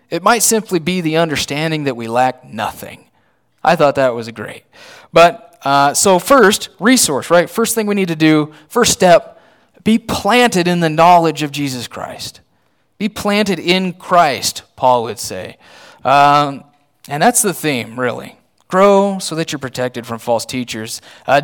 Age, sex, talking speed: 30-49, male, 165 wpm